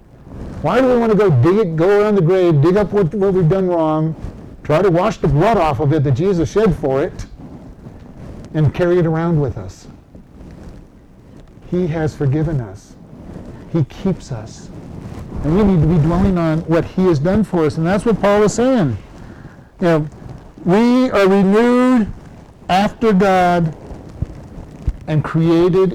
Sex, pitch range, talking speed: male, 155-205 Hz, 170 wpm